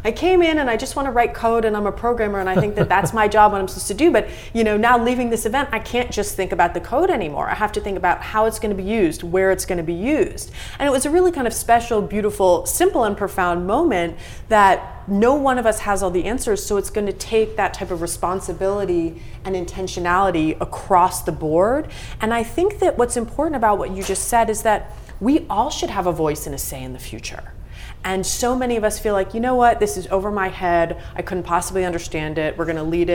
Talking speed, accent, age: 255 wpm, American, 30-49